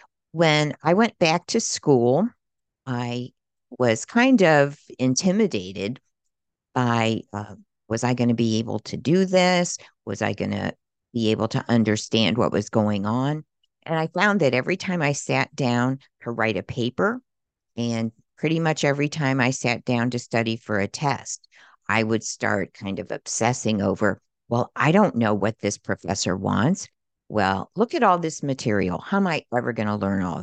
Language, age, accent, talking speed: English, 50-69, American, 175 wpm